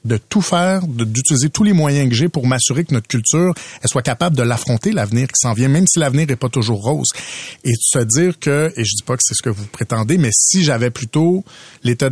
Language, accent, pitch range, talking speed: French, Canadian, 120-155 Hz, 255 wpm